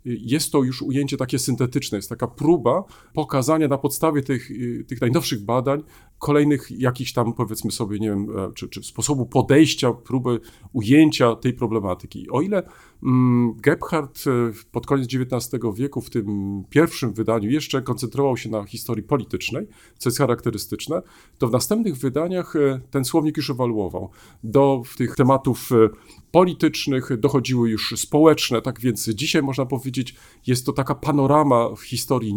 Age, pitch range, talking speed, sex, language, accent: 40-59, 115-145 Hz, 145 wpm, male, Polish, native